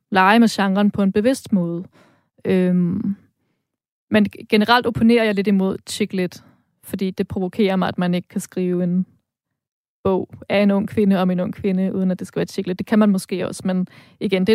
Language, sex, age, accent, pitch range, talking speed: Danish, female, 20-39, native, 185-215 Hz, 200 wpm